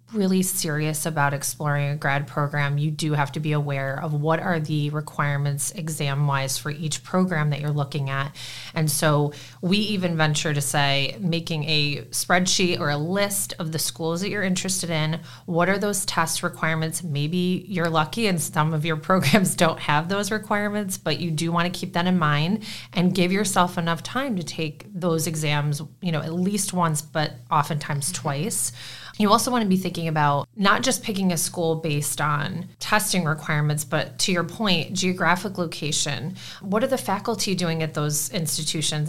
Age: 30-49